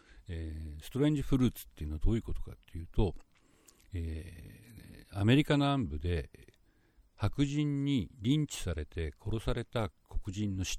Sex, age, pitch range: male, 60-79, 80-105 Hz